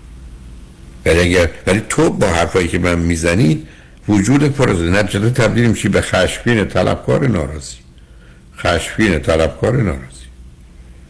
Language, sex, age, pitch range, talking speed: Persian, male, 60-79, 65-100 Hz, 115 wpm